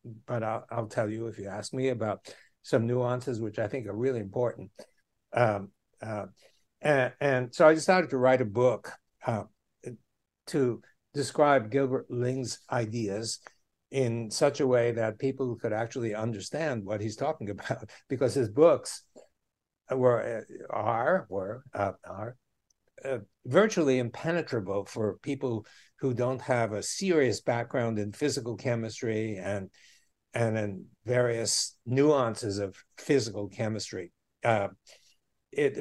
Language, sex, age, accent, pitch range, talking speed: English, male, 60-79, American, 110-135 Hz, 135 wpm